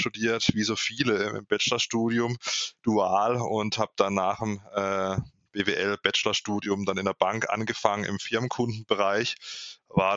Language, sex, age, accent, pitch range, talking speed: German, male, 20-39, German, 100-115 Hz, 130 wpm